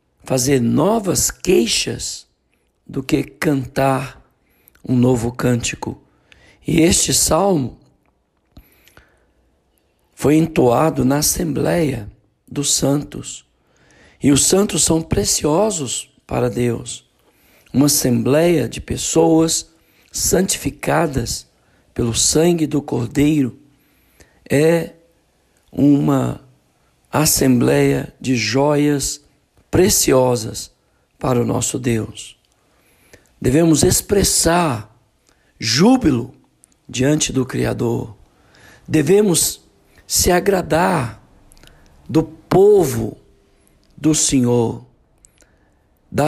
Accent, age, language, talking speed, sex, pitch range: Brazilian, 60-79, Portuguese, 75 wpm, male, 120-160 Hz